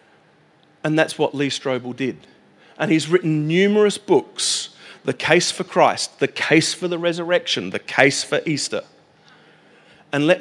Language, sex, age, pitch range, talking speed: English, male, 40-59, 135-205 Hz, 150 wpm